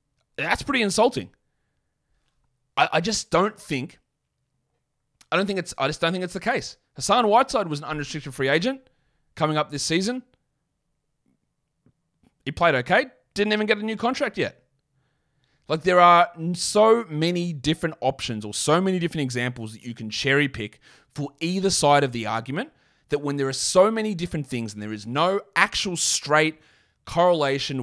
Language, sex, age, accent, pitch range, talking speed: English, male, 30-49, Australian, 140-195 Hz, 170 wpm